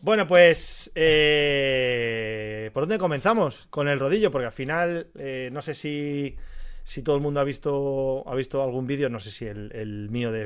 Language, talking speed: Spanish, 190 wpm